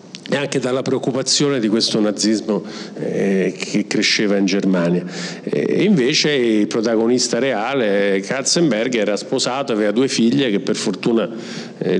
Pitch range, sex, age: 105-155 Hz, male, 50-69